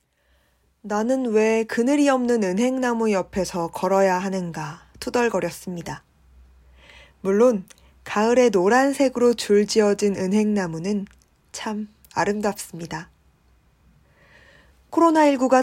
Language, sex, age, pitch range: Korean, female, 20-39, 160-230 Hz